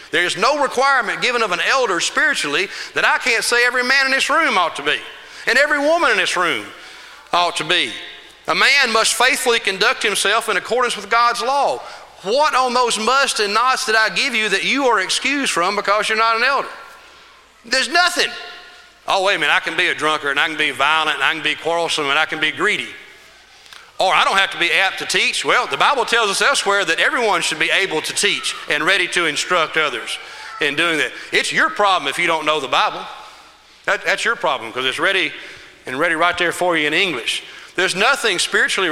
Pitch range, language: 180-265 Hz, English